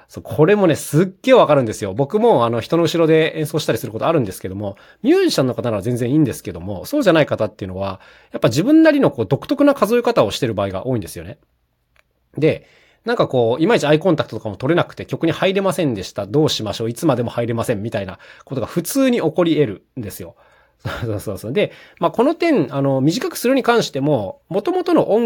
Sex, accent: male, native